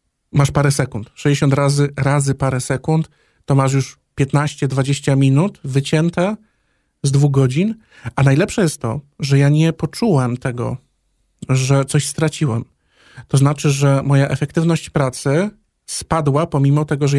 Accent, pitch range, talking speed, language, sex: native, 135-150 Hz, 135 wpm, Polish, male